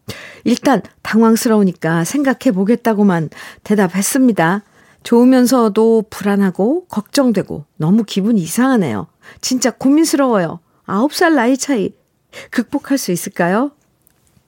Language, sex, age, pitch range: Korean, female, 50-69, 180-265 Hz